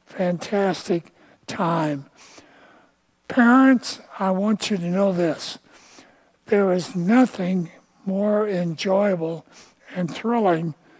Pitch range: 170-210 Hz